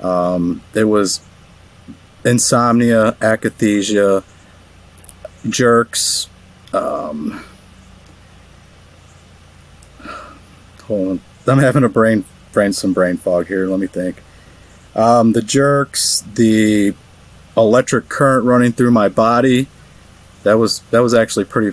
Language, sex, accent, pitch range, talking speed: English, male, American, 90-115 Hz, 100 wpm